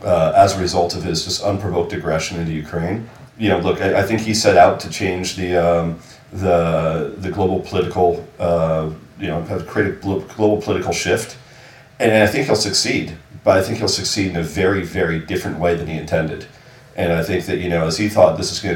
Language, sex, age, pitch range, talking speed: English, male, 40-59, 85-100 Hz, 220 wpm